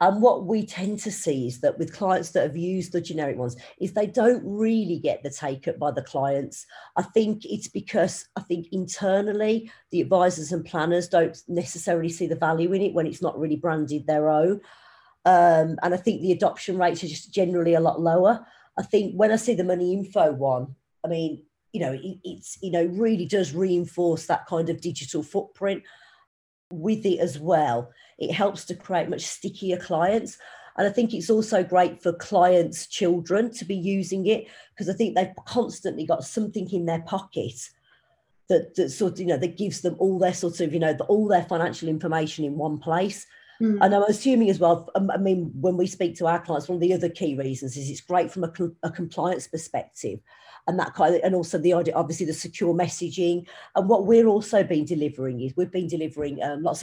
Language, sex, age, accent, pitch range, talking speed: English, female, 40-59, British, 165-195 Hz, 205 wpm